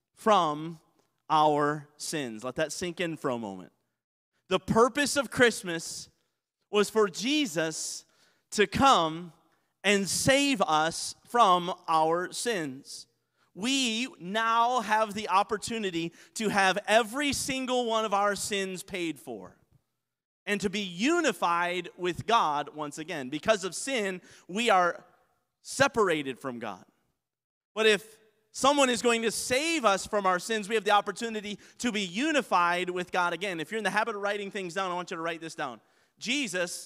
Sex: male